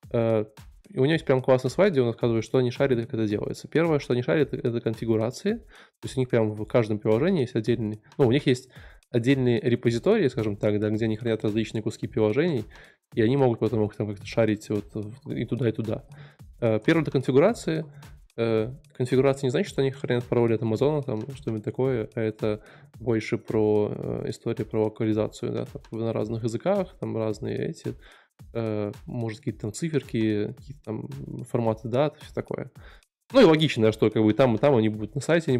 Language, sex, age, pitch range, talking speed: Russian, male, 20-39, 110-130 Hz, 195 wpm